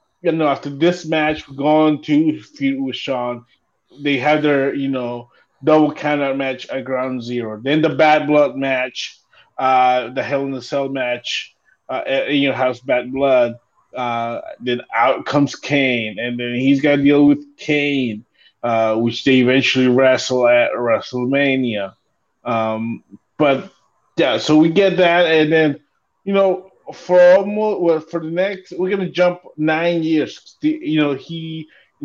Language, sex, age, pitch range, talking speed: English, male, 20-39, 130-155 Hz, 160 wpm